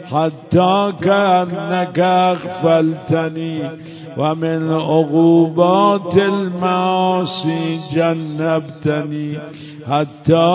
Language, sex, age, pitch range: Persian, male, 60-79, 155-180 Hz